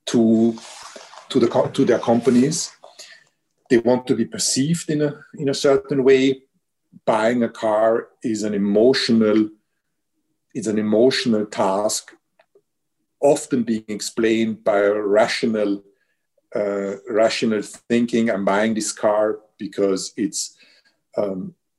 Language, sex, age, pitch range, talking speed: English, male, 50-69, 110-135 Hz, 120 wpm